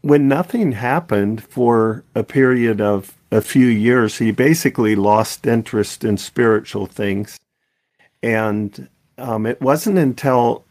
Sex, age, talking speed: male, 50-69, 125 wpm